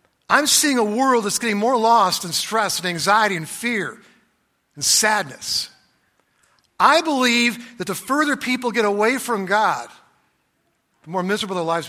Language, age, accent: English, 50-69, American